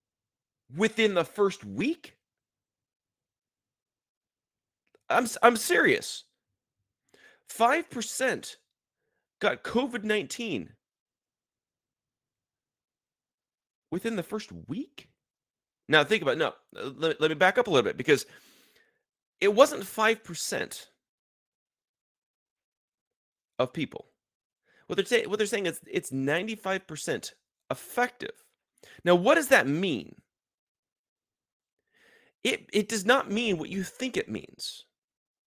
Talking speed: 105 wpm